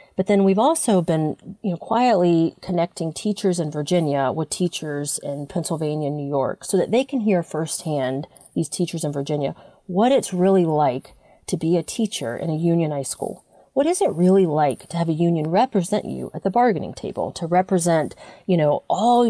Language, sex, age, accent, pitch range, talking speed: English, female, 30-49, American, 150-195 Hz, 190 wpm